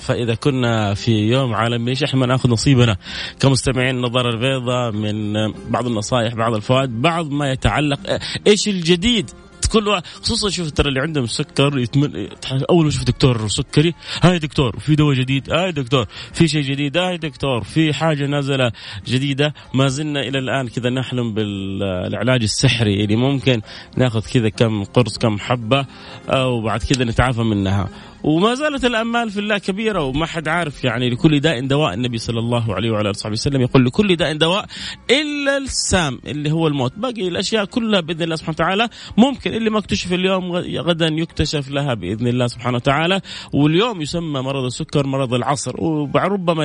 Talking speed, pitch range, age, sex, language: 160 wpm, 120-165 Hz, 30-49, male, Arabic